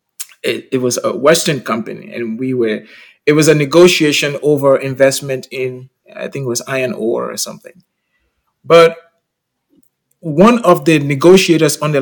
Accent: Nigerian